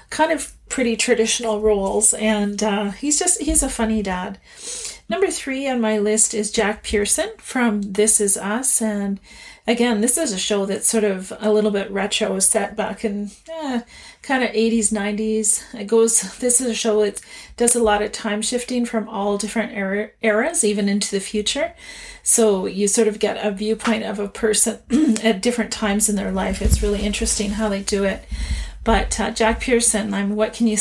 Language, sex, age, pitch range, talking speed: English, female, 40-59, 205-235 Hz, 195 wpm